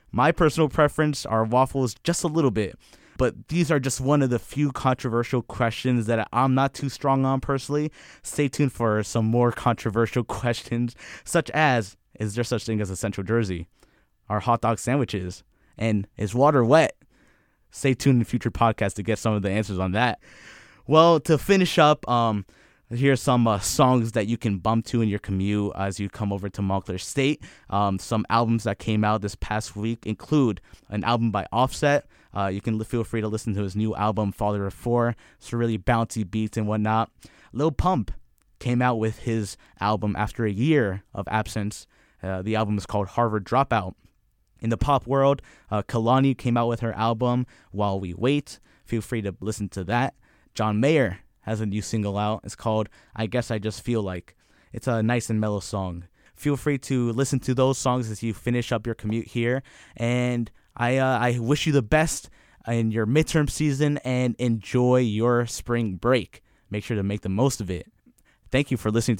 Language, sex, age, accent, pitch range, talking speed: English, male, 20-39, American, 105-125 Hz, 195 wpm